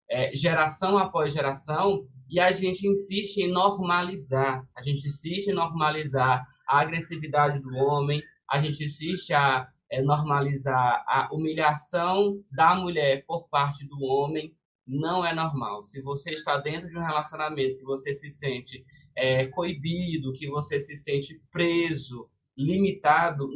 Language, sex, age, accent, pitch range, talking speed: Portuguese, male, 20-39, Brazilian, 140-170 Hz, 130 wpm